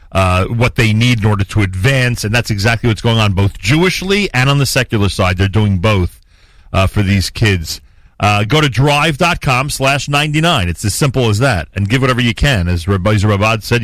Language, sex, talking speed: English, male, 210 wpm